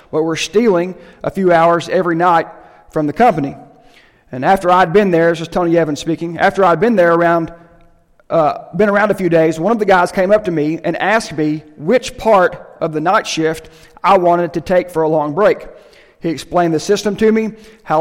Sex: male